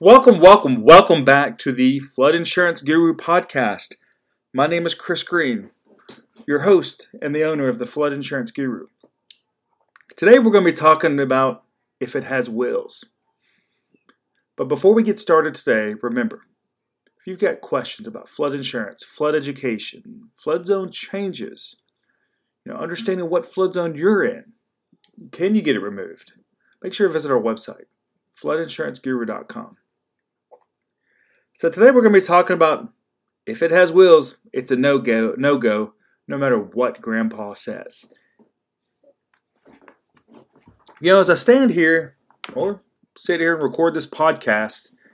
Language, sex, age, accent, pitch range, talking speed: English, male, 30-49, American, 135-185 Hz, 145 wpm